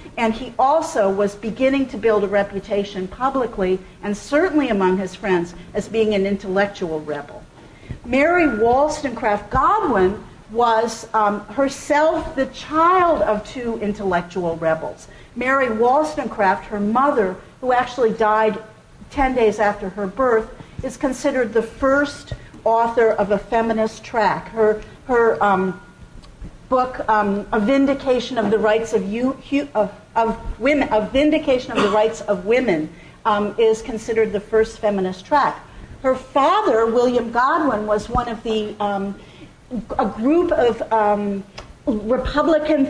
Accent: American